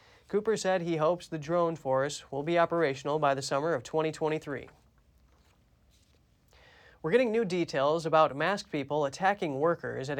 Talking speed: 145 wpm